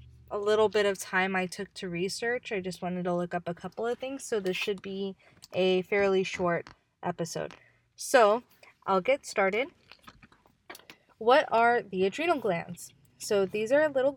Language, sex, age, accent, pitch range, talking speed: English, female, 20-39, American, 185-235 Hz, 165 wpm